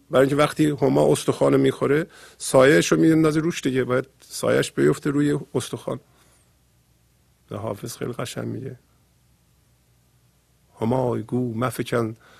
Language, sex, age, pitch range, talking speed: Persian, male, 50-69, 95-120 Hz, 120 wpm